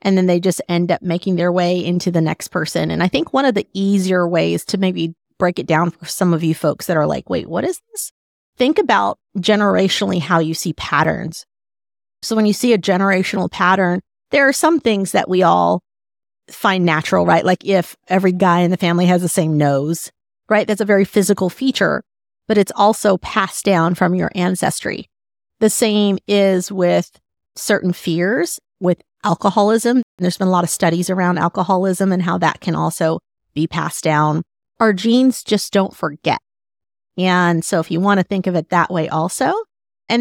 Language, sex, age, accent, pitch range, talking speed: English, female, 30-49, American, 175-210 Hz, 190 wpm